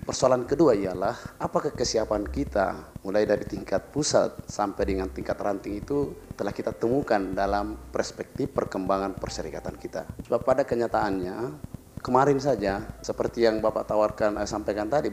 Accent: native